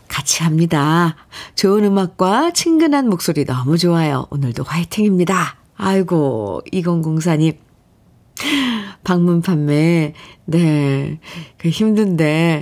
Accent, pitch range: native, 160-235 Hz